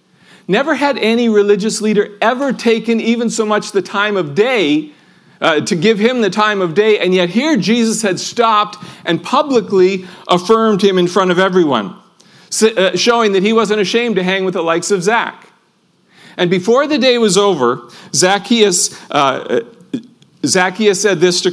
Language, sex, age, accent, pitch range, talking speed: English, male, 40-59, American, 170-215 Hz, 170 wpm